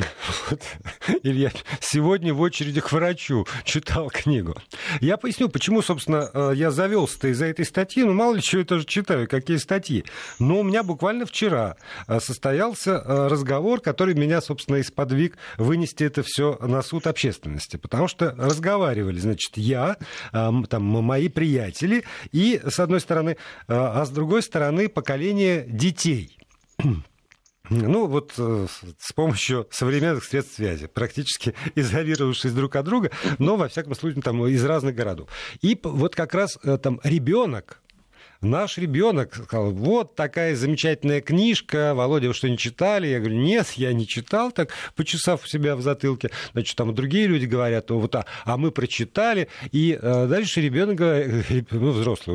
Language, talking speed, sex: Russian, 145 wpm, male